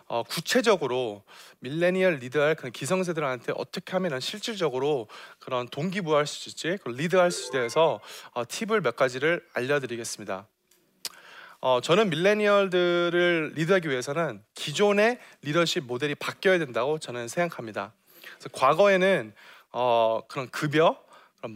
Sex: male